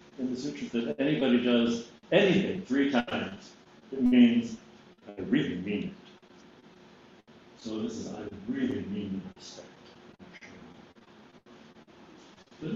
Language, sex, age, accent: English, male, 60-79, American